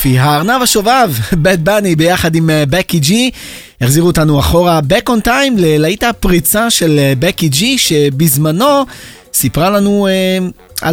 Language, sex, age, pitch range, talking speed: Hebrew, male, 30-49, 145-210 Hz, 125 wpm